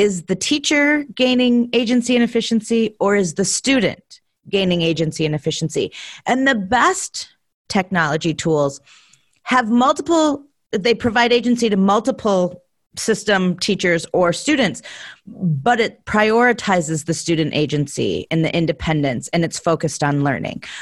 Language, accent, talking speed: English, American, 130 wpm